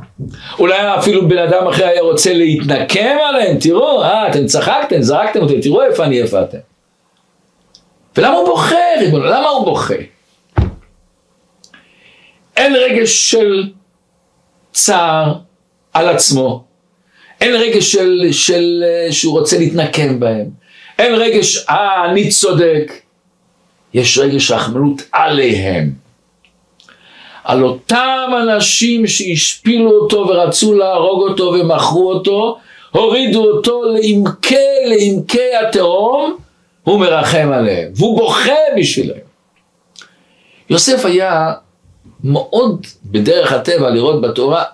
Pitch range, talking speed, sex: 160-230 Hz, 105 wpm, male